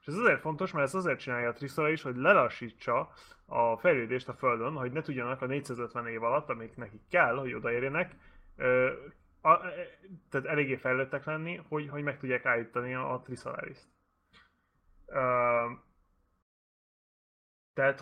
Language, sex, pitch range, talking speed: Hungarian, male, 120-145 Hz, 130 wpm